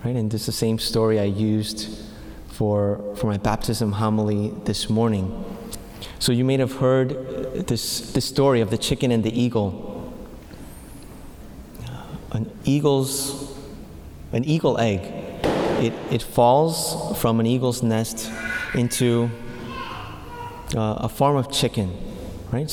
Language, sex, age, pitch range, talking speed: English, male, 30-49, 110-140 Hz, 130 wpm